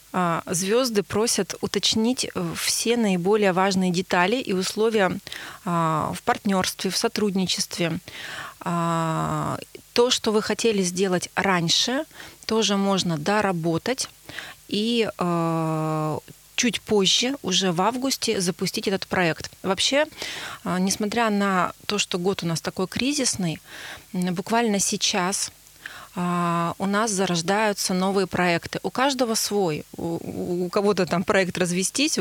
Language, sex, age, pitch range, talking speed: Russian, female, 30-49, 175-215 Hz, 105 wpm